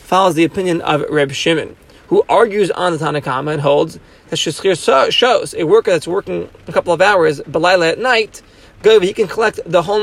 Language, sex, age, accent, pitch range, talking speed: English, male, 30-49, American, 155-205 Hz, 195 wpm